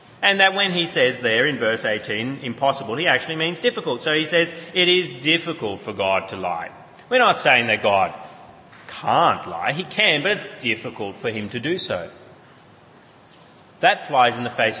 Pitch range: 125-170 Hz